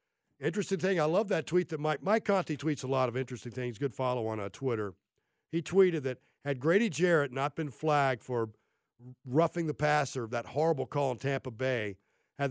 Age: 40-59